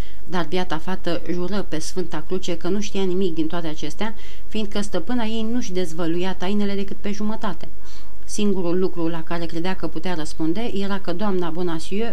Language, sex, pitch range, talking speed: Romanian, female, 170-205 Hz, 180 wpm